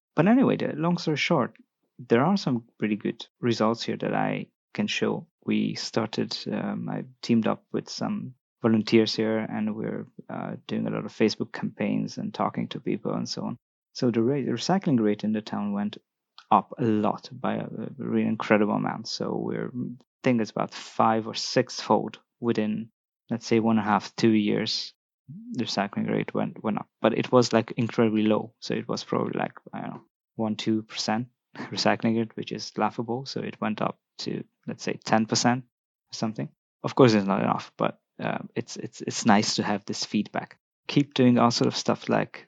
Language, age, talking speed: English, 20-39, 200 wpm